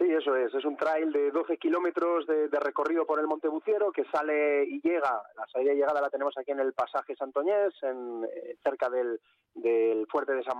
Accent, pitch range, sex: Spanish, 135-185 Hz, male